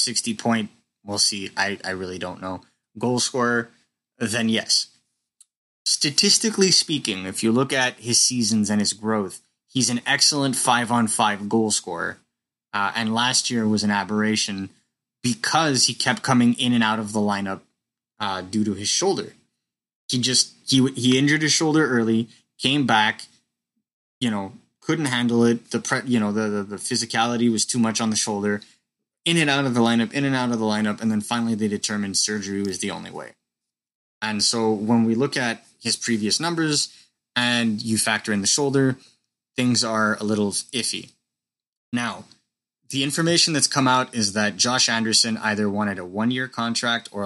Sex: male